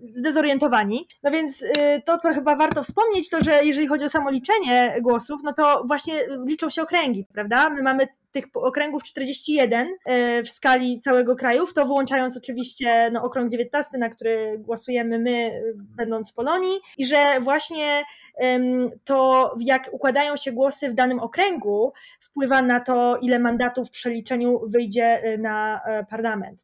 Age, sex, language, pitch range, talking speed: 20-39, female, English, 240-290 Hz, 145 wpm